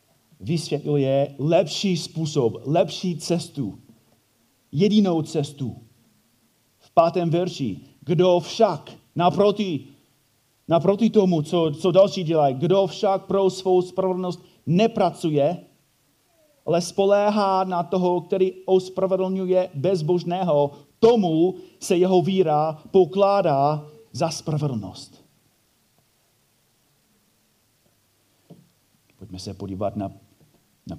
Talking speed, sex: 85 wpm, male